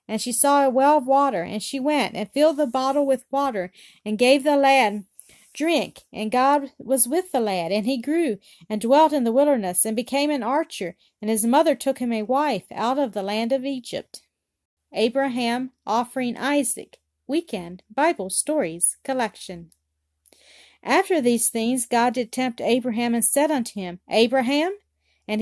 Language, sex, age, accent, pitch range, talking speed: English, female, 40-59, American, 215-280 Hz, 170 wpm